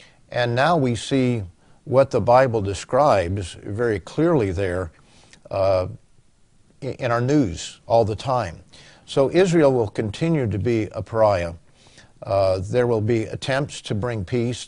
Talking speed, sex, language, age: 140 wpm, male, English, 50-69